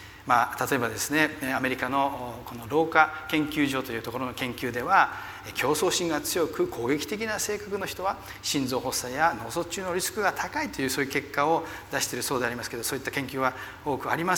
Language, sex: Japanese, male